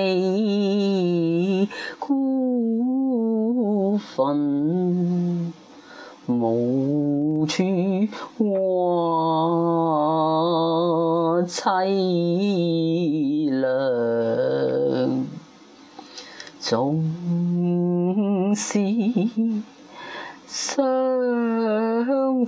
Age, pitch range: 30-49, 150-200 Hz